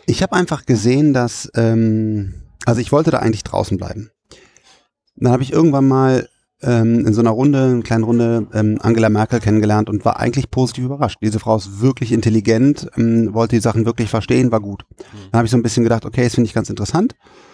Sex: male